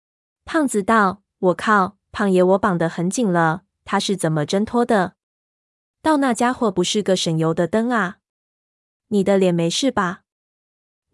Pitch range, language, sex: 175-210 Hz, Chinese, female